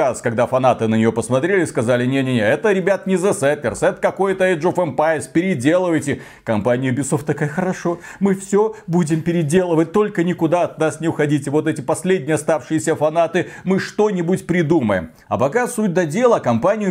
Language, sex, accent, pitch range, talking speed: Russian, male, native, 130-180 Hz, 165 wpm